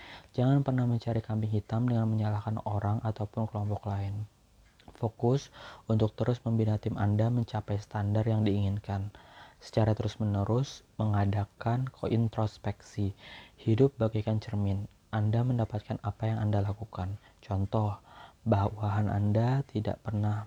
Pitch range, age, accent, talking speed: 105-115 Hz, 20-39, native, 115 wpm